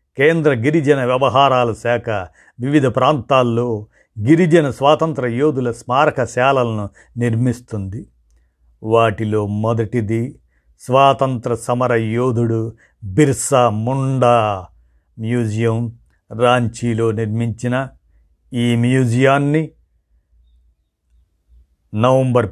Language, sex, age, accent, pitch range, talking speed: Telugu, male, 50-69, native, 105-130 Hz, 65 wpm